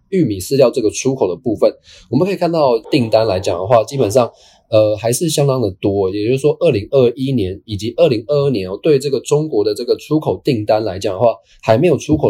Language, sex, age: Chinese, male, 20-39